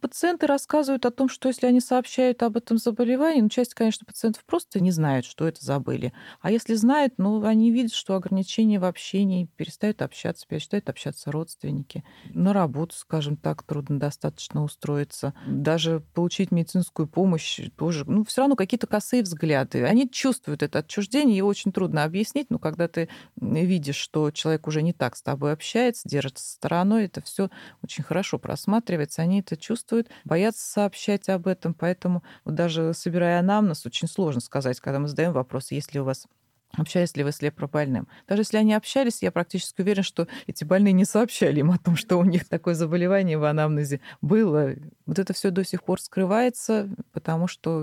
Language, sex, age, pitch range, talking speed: Russian, female, 30-49, 155-215 Hz, 175 wpm